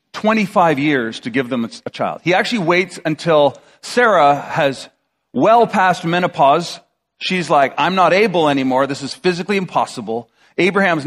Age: 40-59